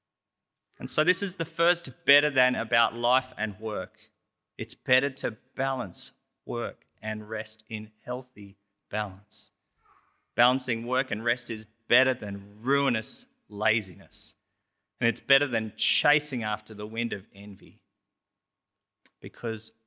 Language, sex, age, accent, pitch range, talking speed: English, male, 30-49, Australian, 100-130 Hz, 125 wpm